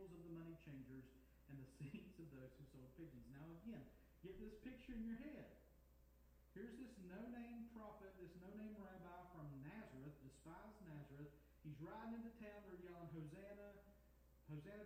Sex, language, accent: male, English, American